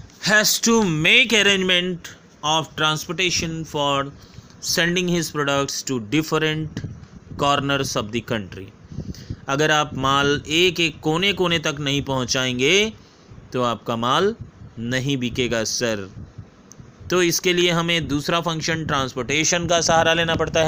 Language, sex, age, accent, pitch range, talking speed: Hindi, male, 30-49, native, 130-165 Hz, 125 wpm